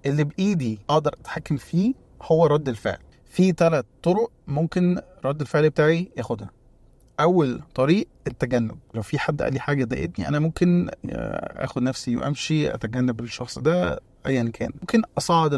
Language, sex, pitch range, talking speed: Arabic, male, 120-160 Hz, 145 wpm